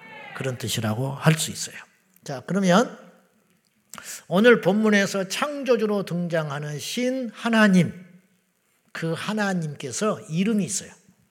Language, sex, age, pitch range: Korean, male, 50-69, 170-250 Hz